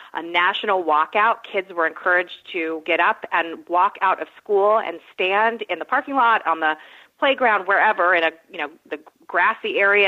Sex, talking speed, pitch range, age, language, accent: female, 185 wpm, 170-230 Hz, 30-49, English, American